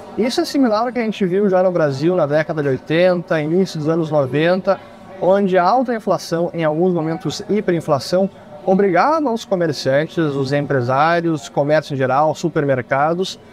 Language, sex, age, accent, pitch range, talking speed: Portuguese, male, 20-39, Brazilian, 155-195 Hz, 160 wpm